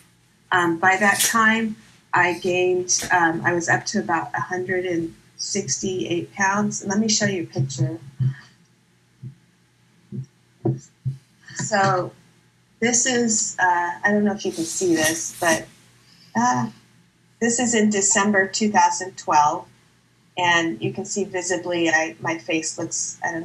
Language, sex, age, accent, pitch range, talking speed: English, female, 30-49, American, 155-195 Hz, 130 wpm